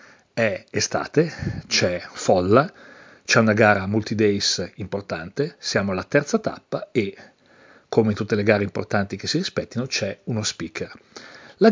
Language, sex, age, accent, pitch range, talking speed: Italian, male, 40-59, native, 105-160 Hz, 140 wpm